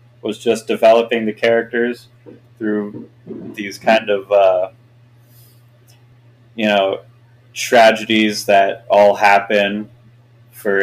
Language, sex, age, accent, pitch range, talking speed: English, male, 30-49, American, 105-120 Hz, 95 wpm